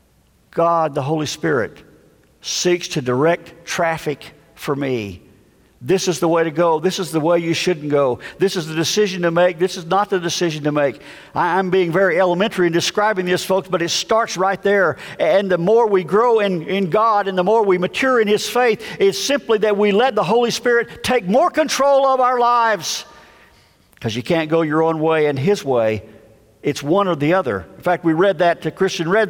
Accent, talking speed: American, 205 wpm